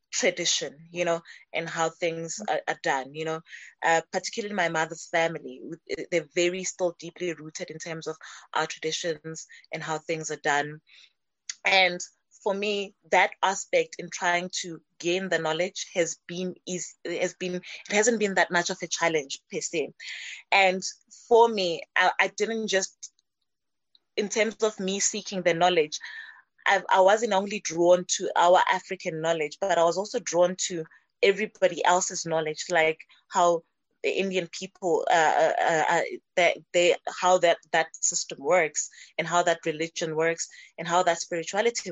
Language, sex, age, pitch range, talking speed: English, female, 20-39, 165-190 Hz, 155 wpm